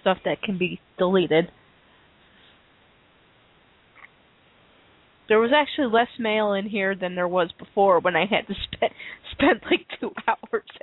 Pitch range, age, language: 190-230 Hz, 30-49, English